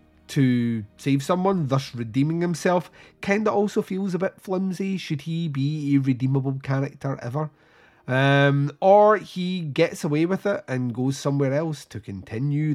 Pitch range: 120-150 Hz